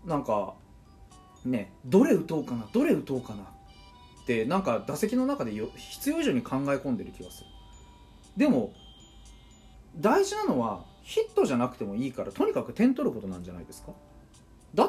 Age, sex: 30-49, male